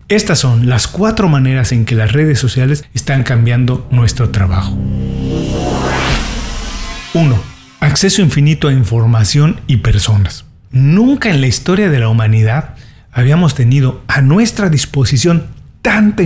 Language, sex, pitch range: Spanish, male, 120-165 Hz